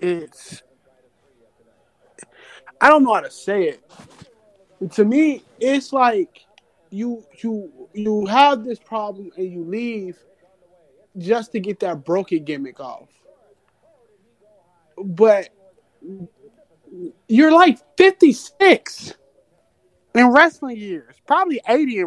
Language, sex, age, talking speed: English, male, 20-39, 105 wpm